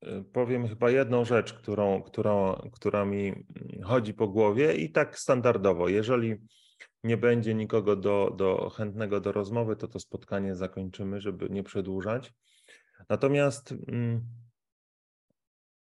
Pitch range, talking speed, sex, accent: 100-115 Hz, 120 wpm, male, native